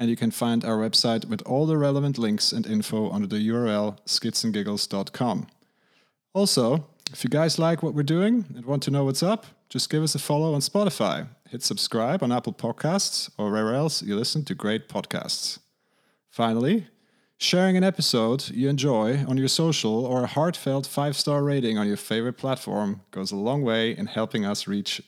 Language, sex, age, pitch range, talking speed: English, male, 30-49, 115-155 Hz, 185 wpm